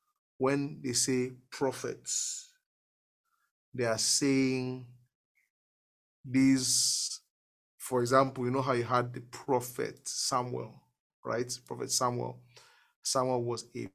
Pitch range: 125-155 Hz